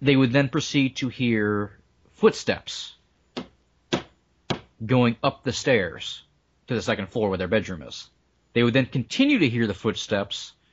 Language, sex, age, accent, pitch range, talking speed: English, male, 30-49, American, 100-135 Hz, 150 wpm